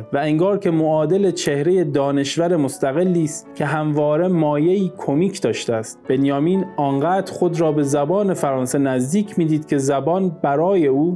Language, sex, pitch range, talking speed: Persian, male, 135-175 Hz, 140 wpm